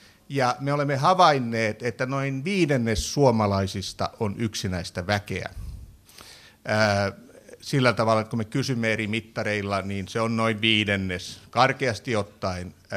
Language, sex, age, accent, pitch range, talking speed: Finnish, male, 60-79, native, 100-135 Hz, 115 wpm